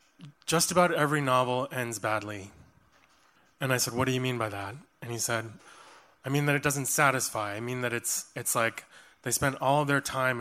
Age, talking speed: 20-39, 210 wpm